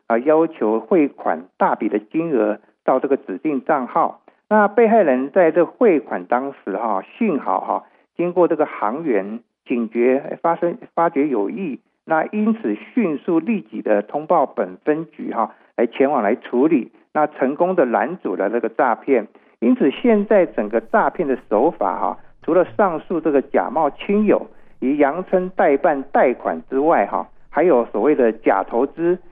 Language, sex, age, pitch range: Chinese, male, 50-69, 130-205 Hz